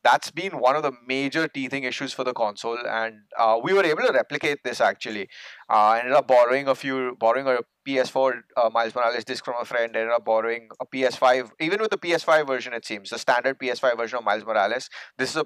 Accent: Indian